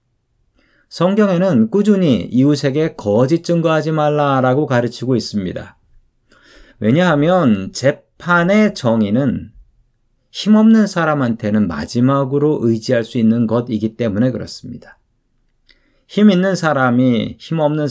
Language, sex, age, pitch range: Korean, male, 40-59, 115-170 Hz